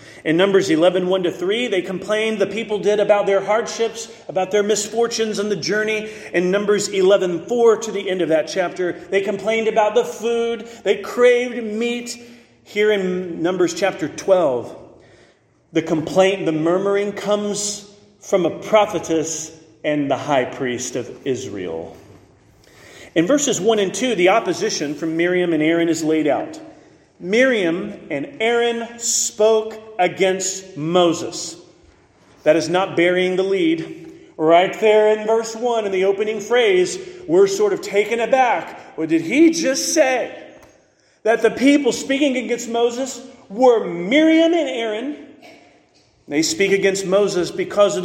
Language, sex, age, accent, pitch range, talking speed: English, male, 40-59, American, 180-240 Hz, 145 wpm